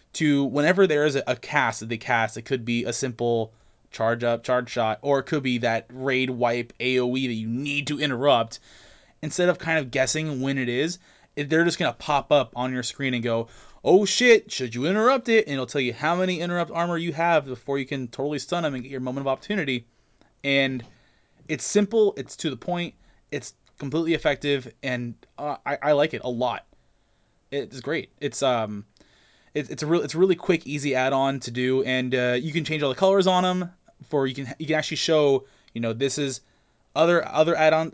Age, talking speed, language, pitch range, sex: 20-39, 220 wpm, English, 125-155 Hz, male